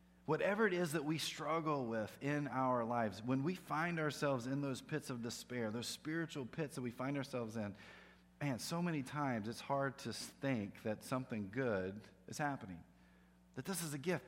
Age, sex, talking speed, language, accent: 40-59, male, 190 wpm, English, American